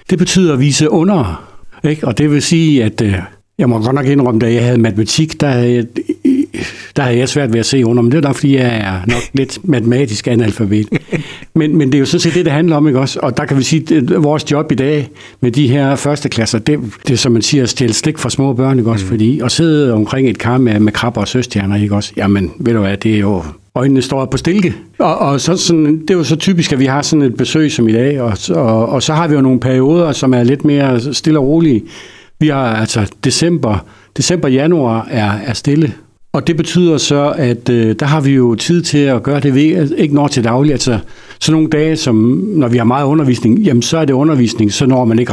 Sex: male